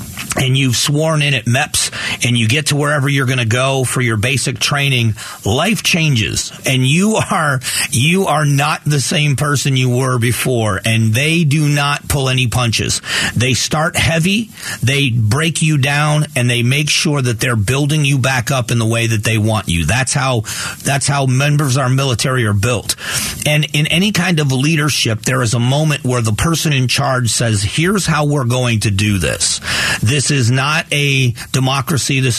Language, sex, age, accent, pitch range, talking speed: English, male, 40-59, American, 115-145 Hz, 195 wpm